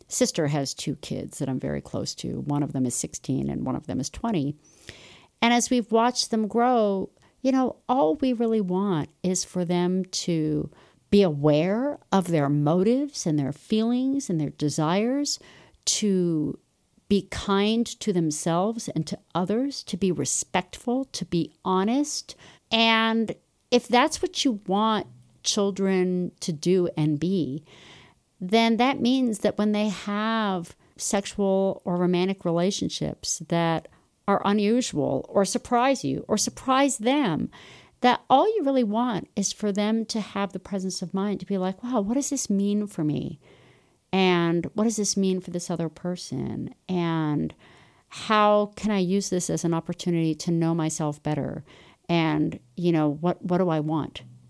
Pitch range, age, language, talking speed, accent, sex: 170-225 Hz, 50-69, English, 160 wpm, American, female